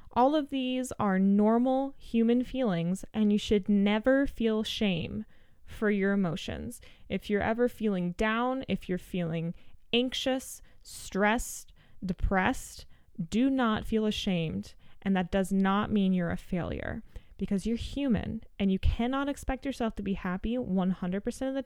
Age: 20-39